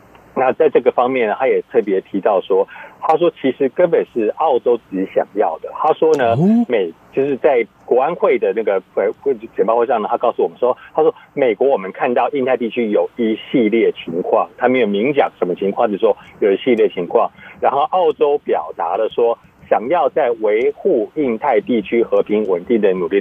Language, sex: Chinese, male